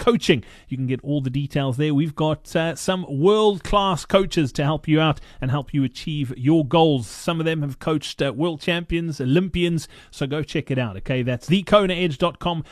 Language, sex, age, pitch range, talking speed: English, male, 30-49, 140-185 Hz, 195 wpm